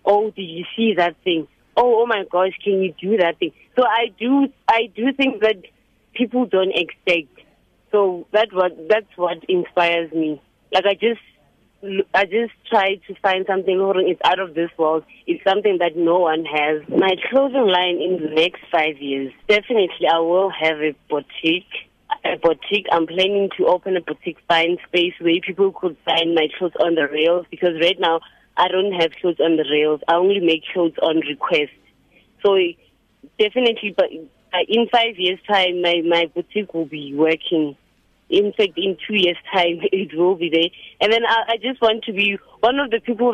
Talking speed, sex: 190 wpm, female